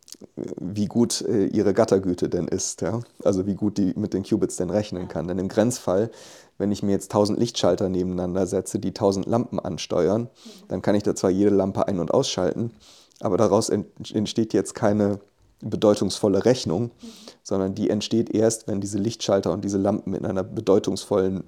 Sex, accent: male, German